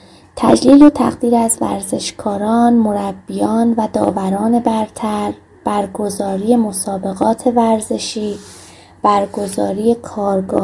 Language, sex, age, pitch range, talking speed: Persian, female, 20-39, 200-235 Hz, 80 wpm